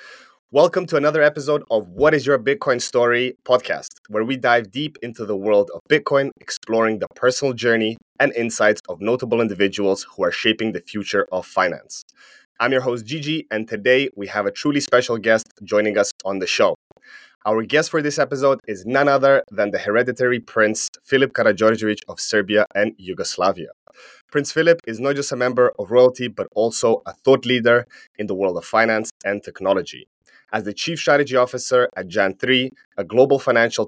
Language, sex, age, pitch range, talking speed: English, male, 20-39, 110-135 Hz, 180 wpm